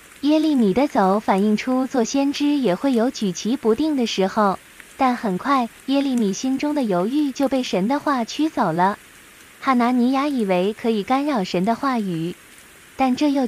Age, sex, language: 20-39, female, Chinese